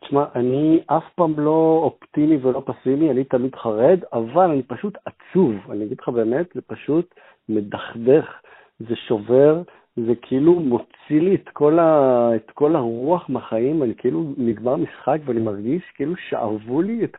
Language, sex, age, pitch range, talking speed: Hebrew, male, 50-69, 115-155 Hz, 155 wpm